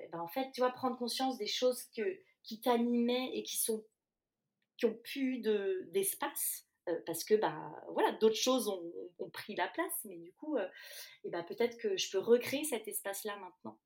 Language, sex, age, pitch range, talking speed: French, female, 30-49, 165-250 Hz, 205 wpm